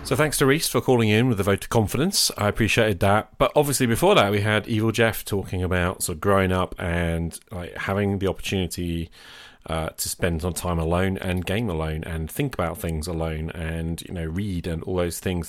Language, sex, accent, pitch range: English, male, British, 85-100 Hz